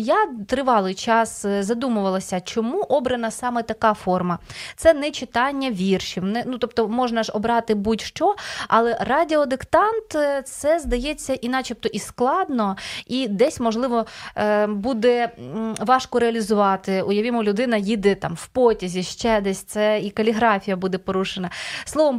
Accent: native